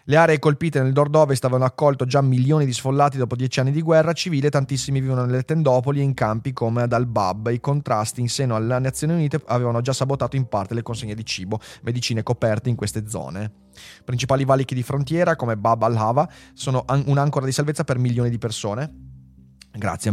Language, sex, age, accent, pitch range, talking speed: Italian, male, 30-49, native, 115-140 Hz, 195 wpm